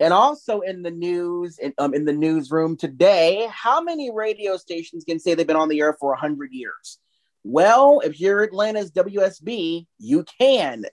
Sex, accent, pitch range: male, American, 140-200 Hz